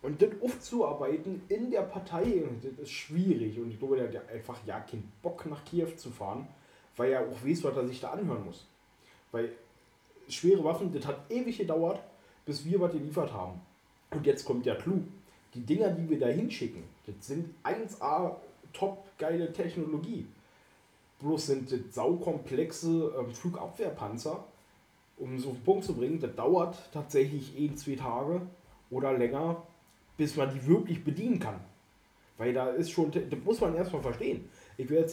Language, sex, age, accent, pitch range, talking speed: German, male, 30-49, German, 130-175 Hz, 165 wpm